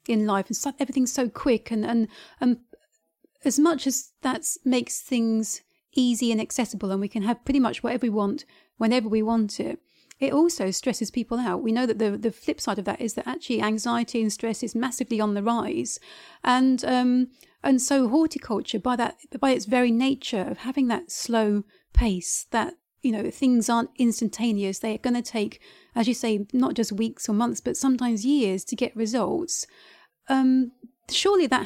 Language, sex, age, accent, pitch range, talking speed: English, female, 40-59, British, 220-260 Hz, 190 wpm